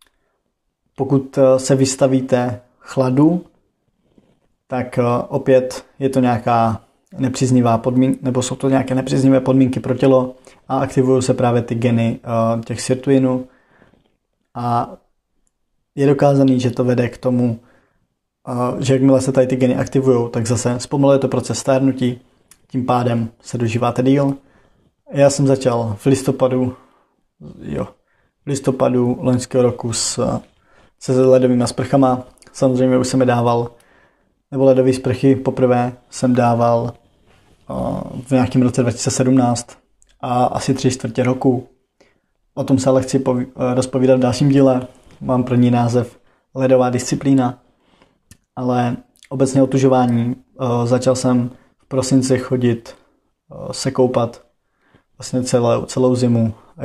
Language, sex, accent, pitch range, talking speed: Czech, male, native, 120-130 Hz, 120 wpm